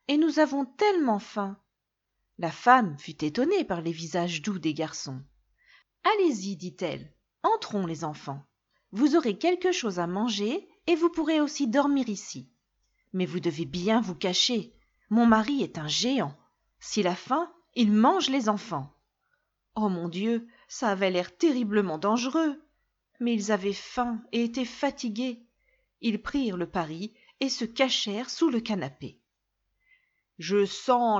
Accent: French